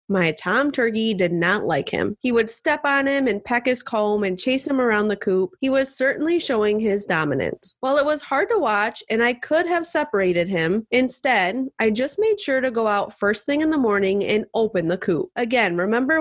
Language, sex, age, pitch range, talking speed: English, female, 20-39, 210-275 Hz, 220 wpm